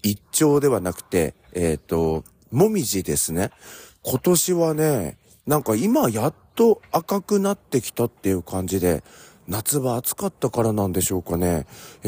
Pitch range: 90-140 Hz